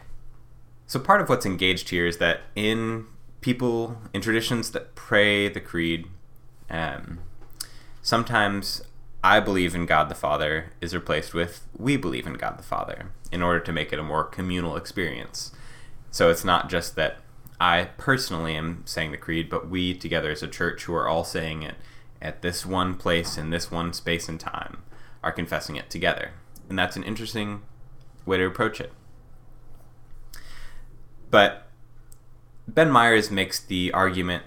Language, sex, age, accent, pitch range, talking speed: English, male, 20-39, American, 85-115 Hz, 160 wpm